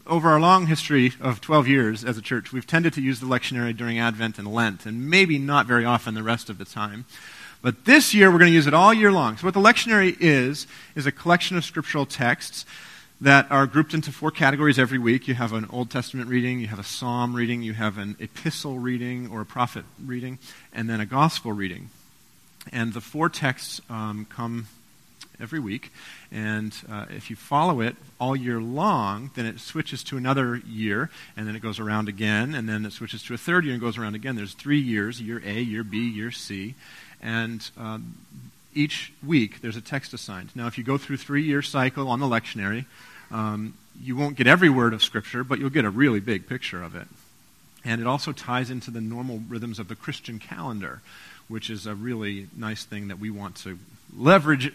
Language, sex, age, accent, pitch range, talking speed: English, male, 40-59, American, 110-140 Hz, 210 wpm